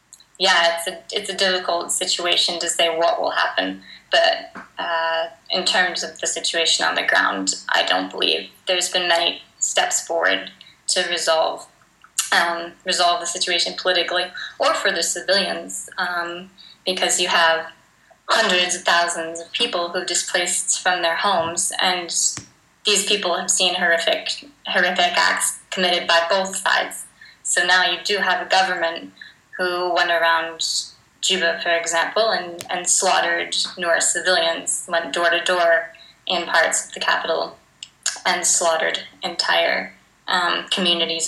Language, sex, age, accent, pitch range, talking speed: English, female, 10-29, American, 170-185 Hz, 145 wpm